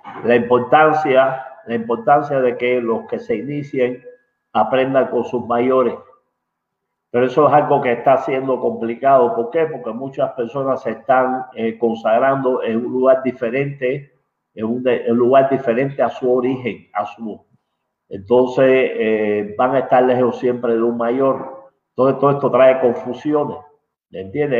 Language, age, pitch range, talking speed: English, 50-69, 115-135 Hz, 150 wpm